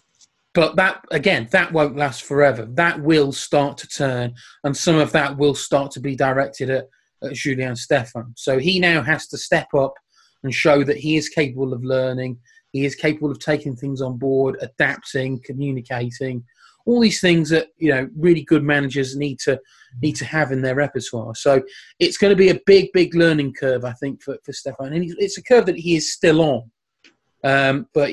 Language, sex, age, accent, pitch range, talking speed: English, male, 30-49, British, 135-155 Hz, 200 wpm